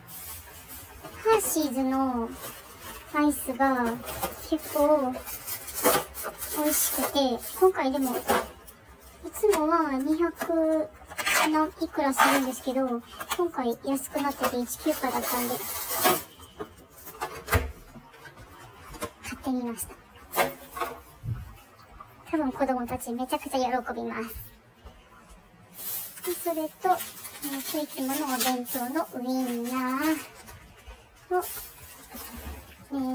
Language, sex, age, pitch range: Japanese, male, 30-49, 255-320 Hz